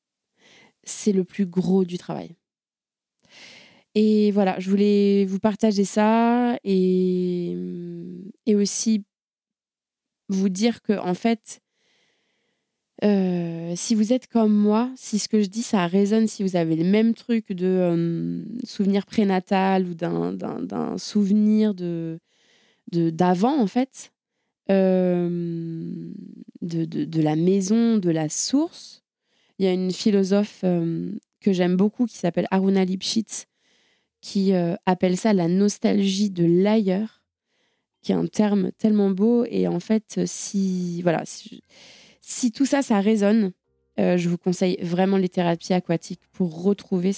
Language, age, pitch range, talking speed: French, 20-39, 180-215 Hz, 135 wpm